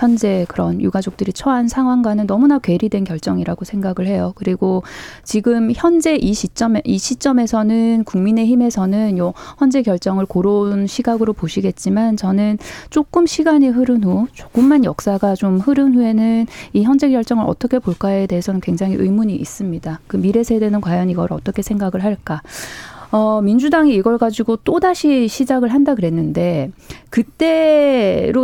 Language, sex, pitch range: Korean, female, 190-250 Hz